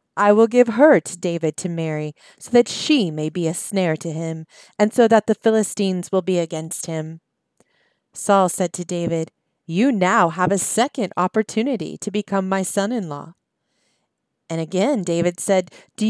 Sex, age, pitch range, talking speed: female, 30-49, 170-225 Hz, 170 wpm